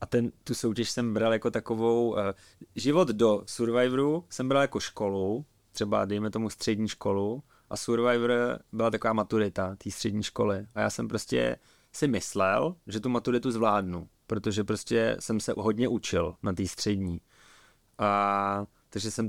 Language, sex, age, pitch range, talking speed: English, male, 20-39, 100-110 Hz, 160 wpm